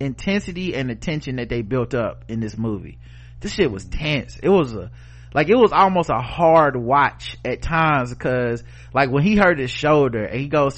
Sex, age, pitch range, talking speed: male, 30-49, 120-160 Hz, 200 wpm